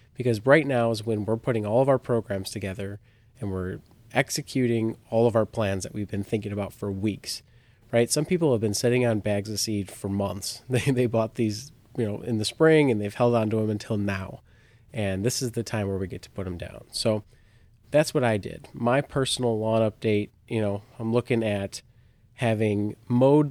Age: 30-49